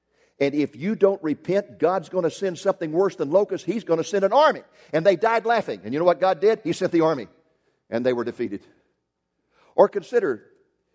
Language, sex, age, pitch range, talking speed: English, male, 50-69, 140-200 Hz, 215 wpm